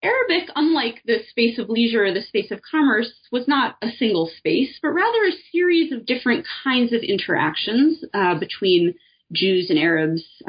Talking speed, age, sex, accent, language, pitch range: 170 wpm, 20-39, female, American, English, 190-290 Hz